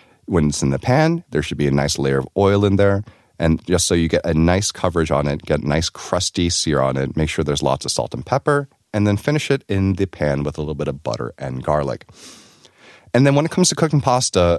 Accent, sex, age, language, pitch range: American, male, 30-49, Korean, 75-105 Hz